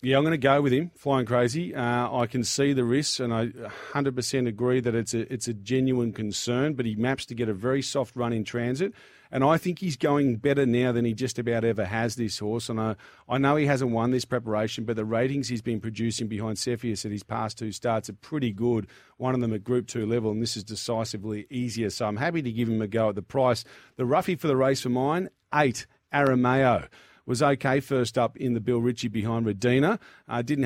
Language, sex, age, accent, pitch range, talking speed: English, male, 40-59, Australian, 115-135 Hz, 235 wpm